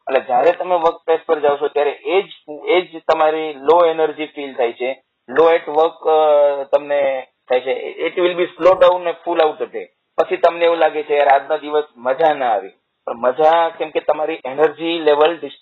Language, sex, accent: English, male, Indian